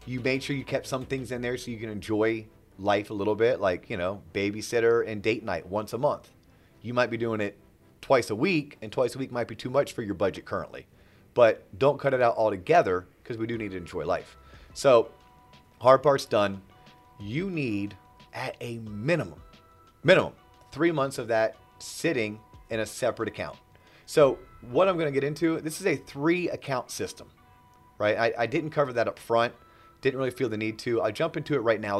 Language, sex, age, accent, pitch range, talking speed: English, male, 30-49, American, 105-135 Hz, 210 wpm